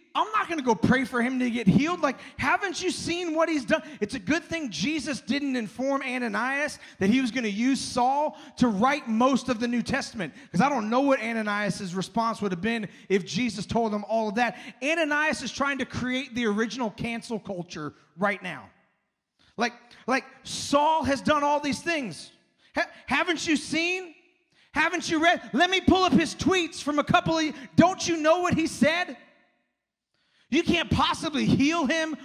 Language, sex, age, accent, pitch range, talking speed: English, male, 30-49, American, 230-295 Hz, 190 wpm